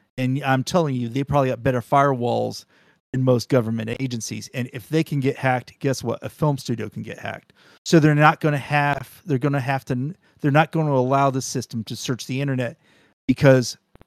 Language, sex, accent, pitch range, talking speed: English, male, American, 120-145 Hz, 200 wpm